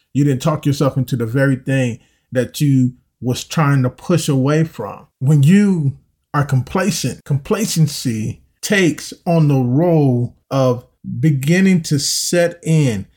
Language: English